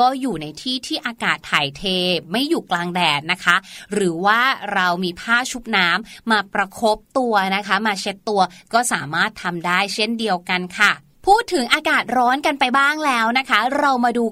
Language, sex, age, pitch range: Thai, female, 30-49, 205-280 Hz